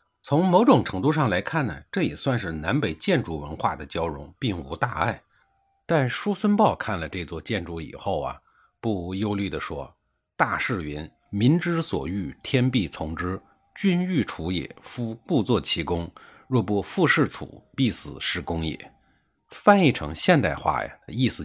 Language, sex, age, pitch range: Chinese, male, 50-69, 85-125 Hz